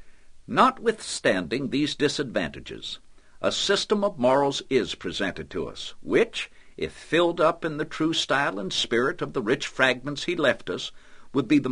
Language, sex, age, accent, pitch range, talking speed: English, male, 60-79, American, 120-165 Hz, 160 wpm